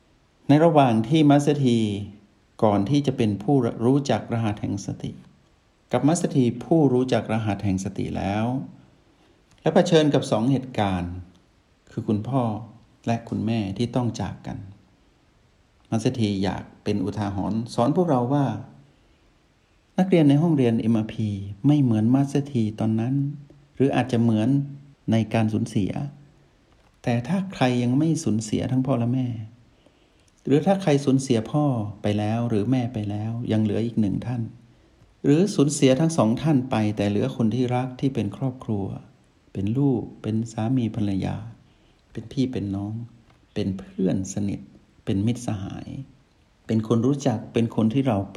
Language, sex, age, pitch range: Thai, male, 60-79, 105-135 Hz